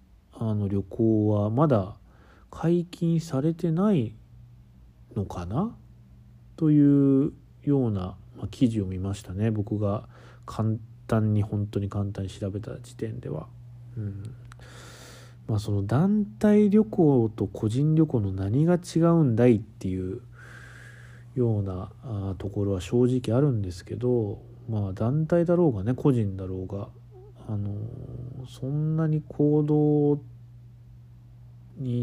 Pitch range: 105-125 Hz